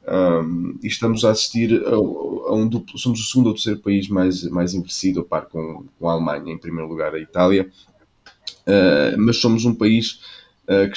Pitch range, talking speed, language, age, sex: 90-105 Hz, 180 wpm, Portuguese, 20-39, male